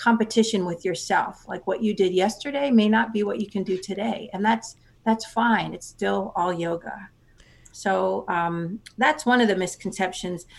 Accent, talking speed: American, 175 wpm